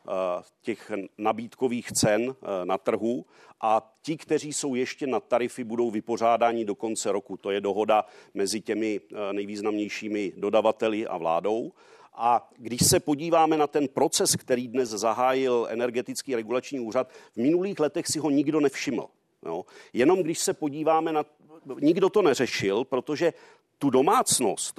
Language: Czech